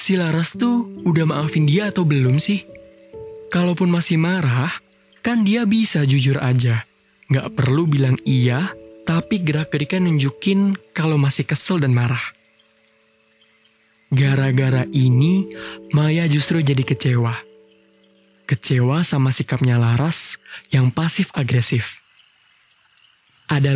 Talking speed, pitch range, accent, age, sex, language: 110 wpm, 125-170 Hz, native, 20-39, male, Indonesian